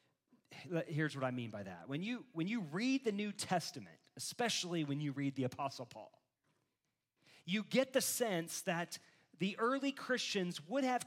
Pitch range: 155-205 Hz